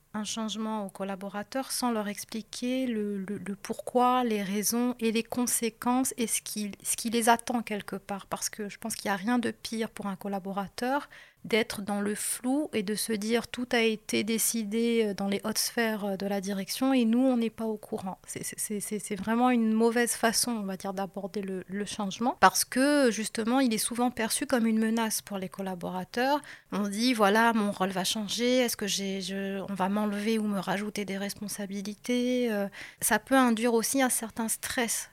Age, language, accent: 30-49, French, French